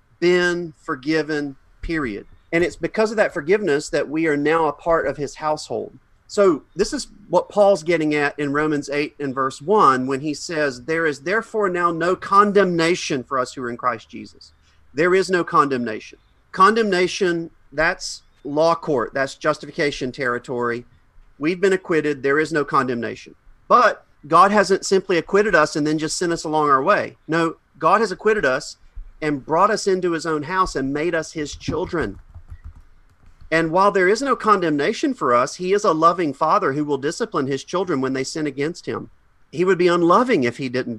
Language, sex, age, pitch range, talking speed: English, male, 40-59, 140-180 Hz, 185 wpm